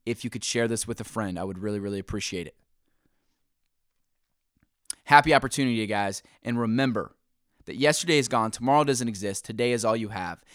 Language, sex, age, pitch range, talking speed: English, male, 20-39, 100-125 Hz, 175 wpm